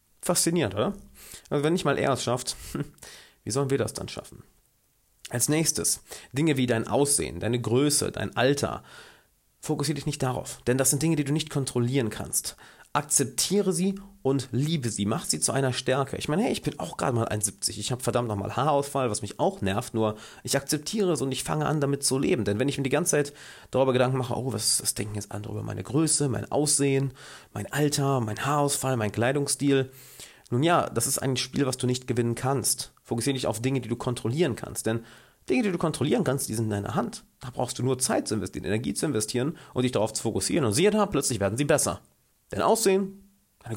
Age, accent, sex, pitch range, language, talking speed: 30-49, German, male, 115-145 Hz, German, 220 wpm